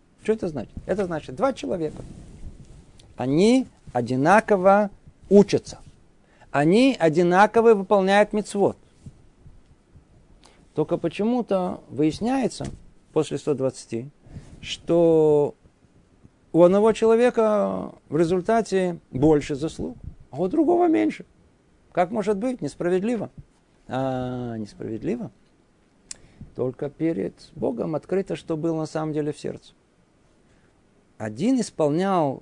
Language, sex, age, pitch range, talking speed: Russian, male, 50-69, 145-205 Hz, 90 wpm